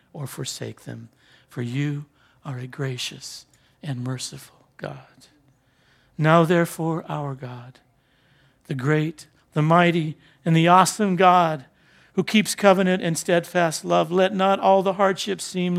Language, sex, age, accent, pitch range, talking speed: English, male, 50-69, American, 155-200 Hz, 135 wpm